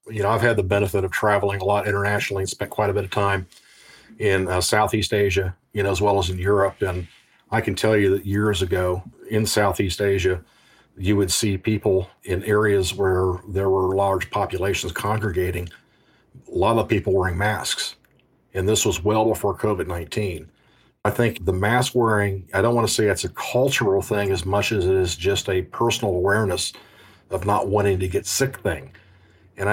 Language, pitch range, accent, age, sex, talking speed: English, 95-110 Hz, American, 50-69, male, 190 wpm